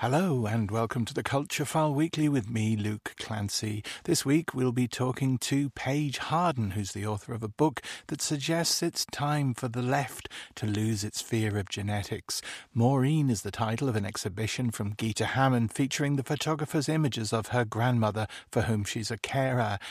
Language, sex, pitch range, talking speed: English, male, 110-135 Hz, 185 wpm